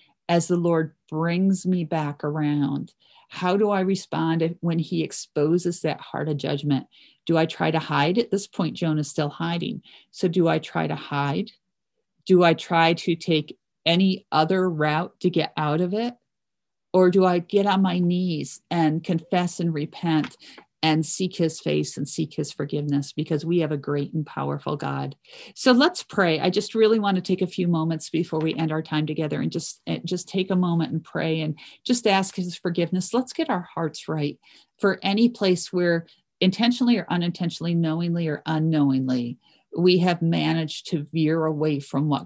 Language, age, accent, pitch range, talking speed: English, 40-59, American, 155-185 Hz, 185 wpm